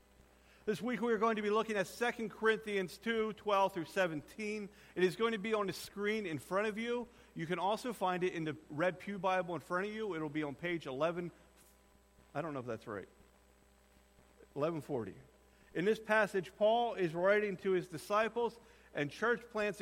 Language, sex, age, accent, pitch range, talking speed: English, male, 40-59, American, 180-225 Hz, 195 wpm